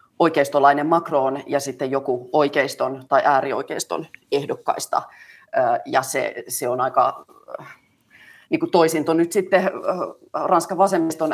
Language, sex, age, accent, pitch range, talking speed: Finnish, female, 30-49, native, 135-175 Hz, 110 wpm